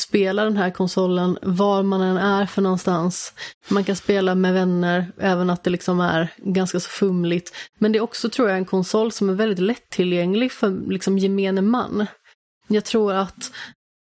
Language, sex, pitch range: Swedish, female, 185-205 Hz